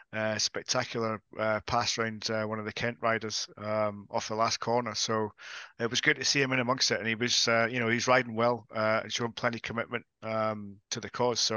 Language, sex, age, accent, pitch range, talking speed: English, male, 30-49, British, 110-125 Hz, 240 wpm